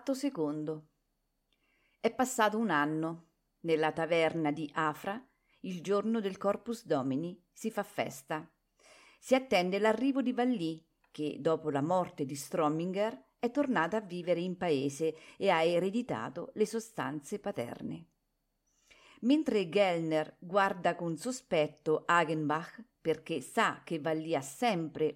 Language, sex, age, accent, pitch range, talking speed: Italian, female, 40-59, native, 155-220 Hz, 120 wpm